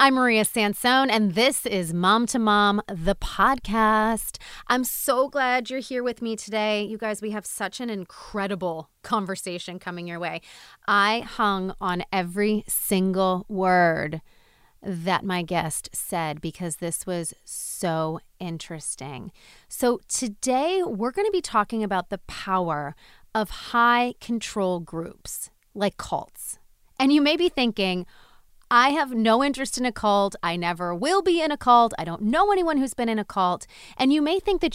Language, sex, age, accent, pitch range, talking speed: English, female, 30-49, American, 180-245 Hz, 160 wpm